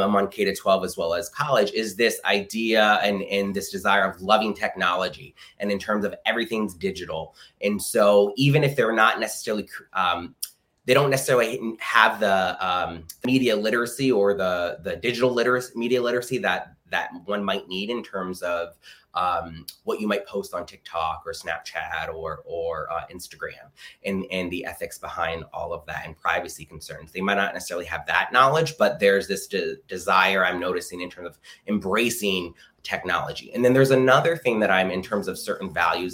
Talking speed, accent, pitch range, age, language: 185 wpm, American, 95-120 Hz, 20-39, English